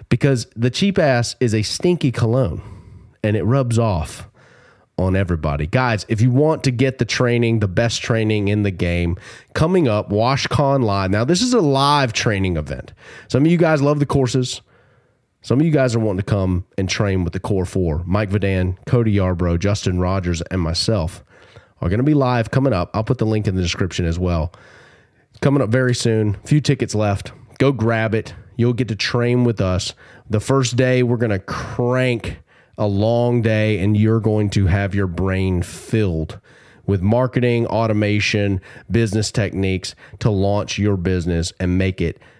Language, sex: English, male